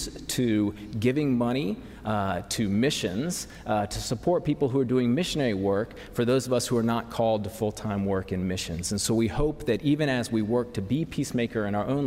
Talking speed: 215 wpm